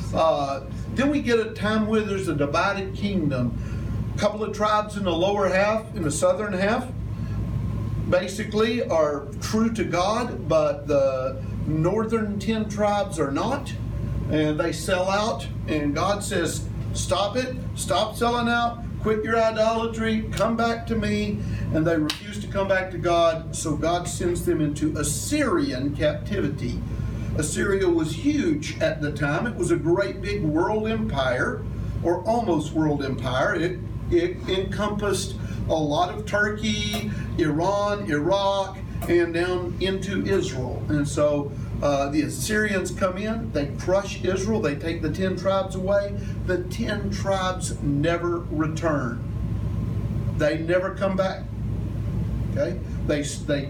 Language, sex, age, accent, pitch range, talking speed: English, male, 50-69, American, 115-190 Hz, 140 wpm